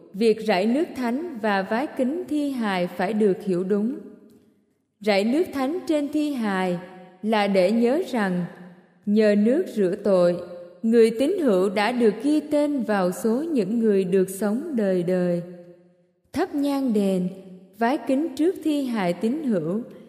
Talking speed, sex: 155 wpm, female